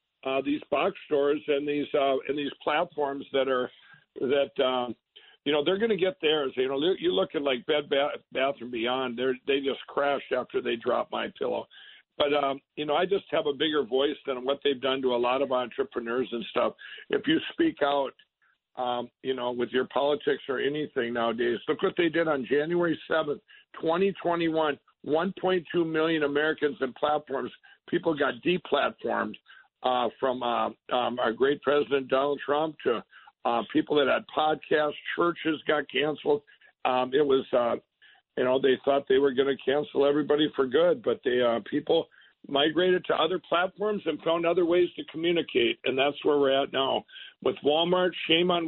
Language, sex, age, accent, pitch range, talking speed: English, male, 60-79, American, 135-170 Hz, 185 wpm